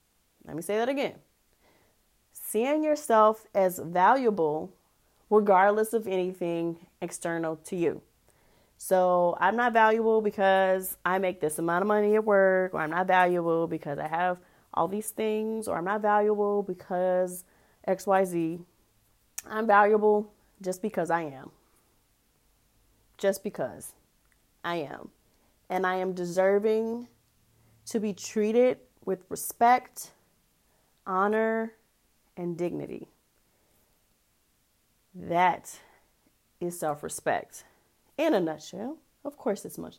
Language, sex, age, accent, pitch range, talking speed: English, female, 30-49, American, 165-215 Hz, 115 wpm